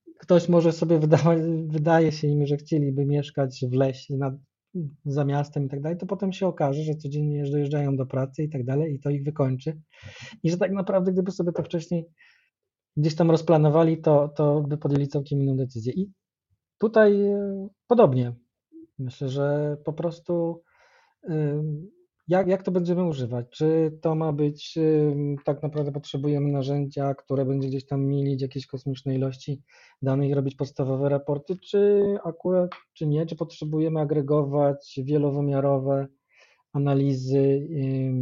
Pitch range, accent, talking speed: 140-160 Hz, native, 145 wpm